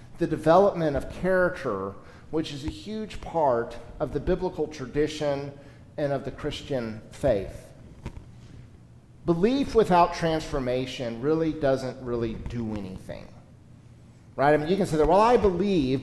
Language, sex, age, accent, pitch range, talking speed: English, male, 50-69, American, 125-175 Hz, 135 wpm